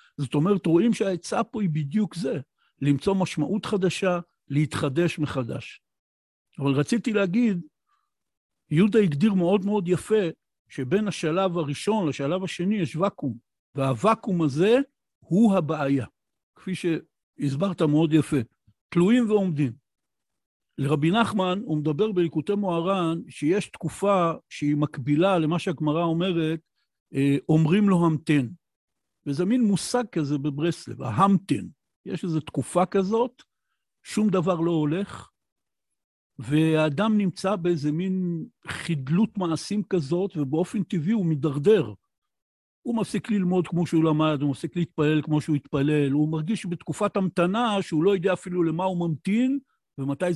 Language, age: Hebrew, 60-79